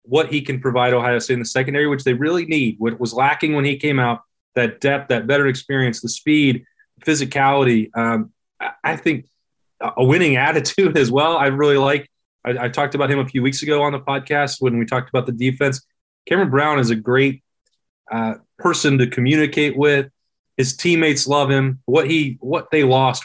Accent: American